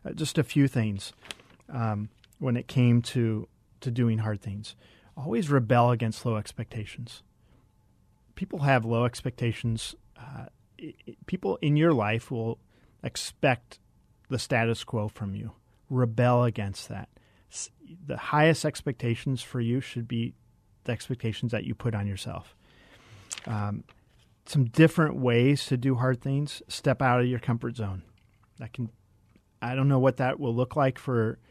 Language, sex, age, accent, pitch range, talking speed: English, male, 40-59, American, 110-135 Hz, 150 wpm